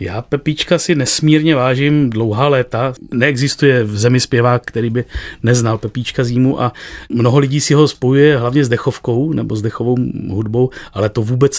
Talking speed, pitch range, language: 165 wpm, 115-135 Hz, Czech